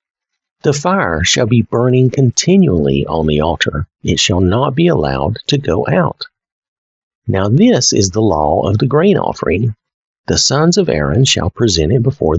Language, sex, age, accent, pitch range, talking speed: English, male, 50-69, American, 95-135 Hz, 165 wpm